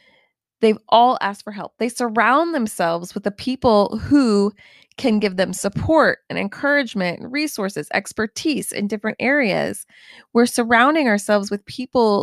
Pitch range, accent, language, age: 195-260 Hz, American, English, 20-39